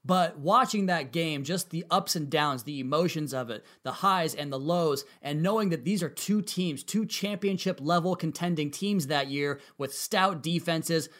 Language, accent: English, American